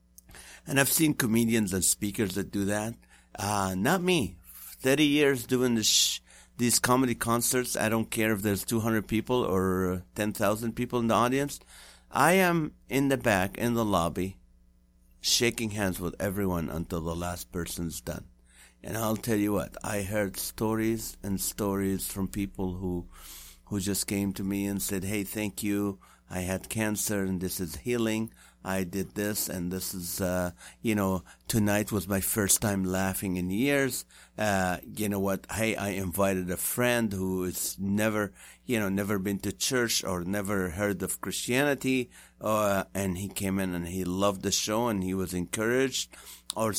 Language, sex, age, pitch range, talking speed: English, male, 50-69, 95-115 Hz, 170 wpm